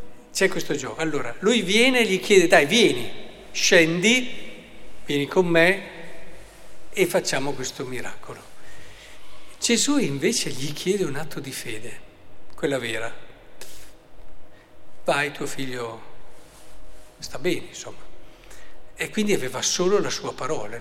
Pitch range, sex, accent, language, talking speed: 135-175 Hz, male, native, Italian, 120 wpm